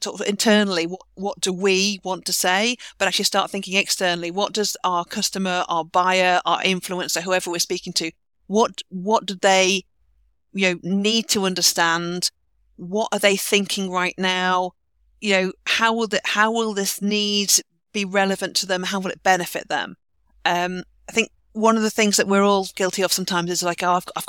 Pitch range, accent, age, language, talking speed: 175-200 Hz, British, 40-59, English, 195 wpm